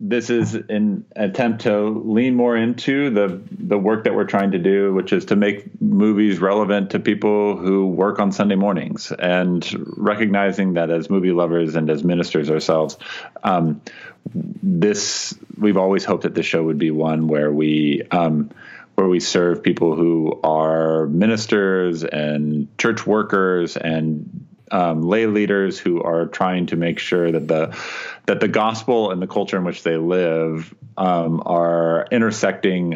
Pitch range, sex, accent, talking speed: 85-110 Hz, male, American, 160 wpm